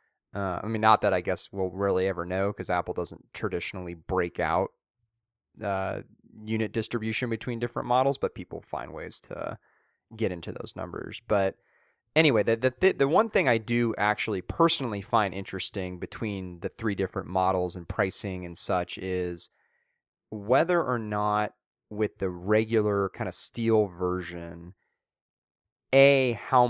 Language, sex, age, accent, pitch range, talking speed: English, male, 30-49, American, 90-110 Hz, 150 wpm